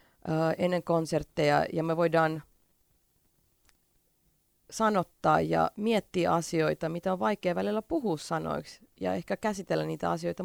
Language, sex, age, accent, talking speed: Finnish, female, 30-49, native, 115 wpm